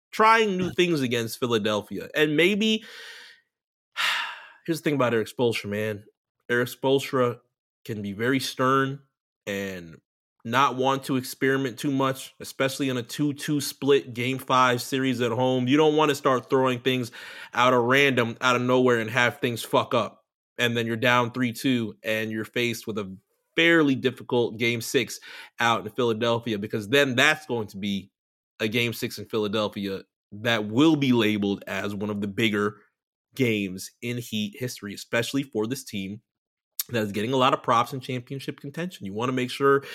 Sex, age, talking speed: male, 30-49, 175 wpm